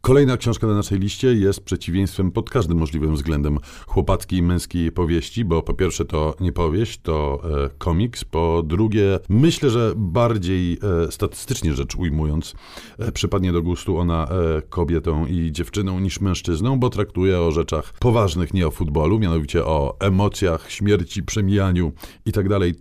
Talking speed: 140 wpm